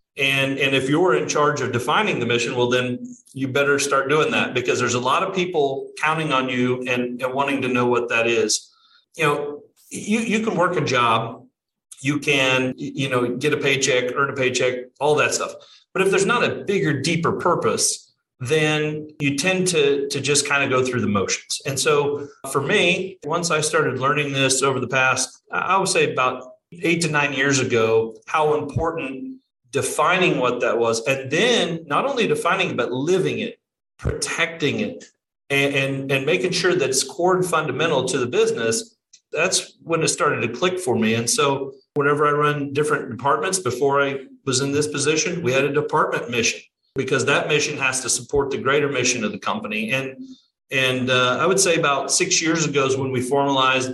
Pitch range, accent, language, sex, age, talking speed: 130-160 Hz, American, English, male, 30-49, 200 wpm